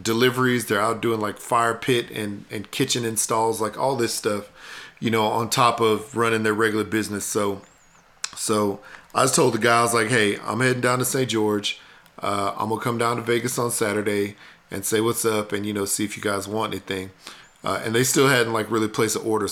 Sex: male